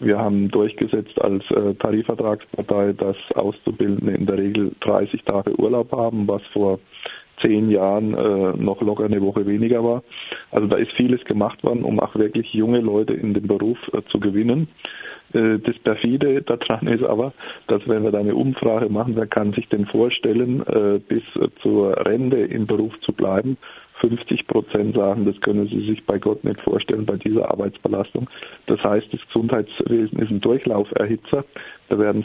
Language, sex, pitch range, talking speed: German, male, 100-115 Hz, 160 wpm